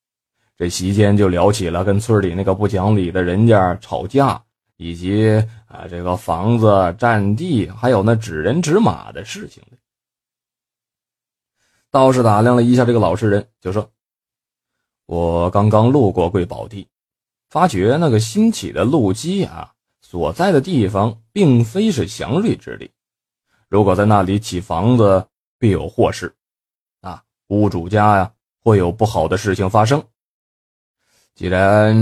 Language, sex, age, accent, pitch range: Chinese, male, 20-39, native, 95-120 Hz